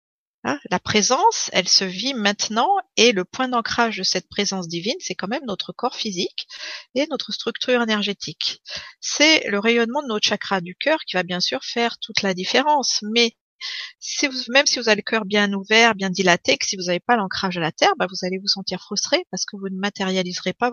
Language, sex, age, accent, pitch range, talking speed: French, female, 40-59, French, 185-240 Hz, 215 wpm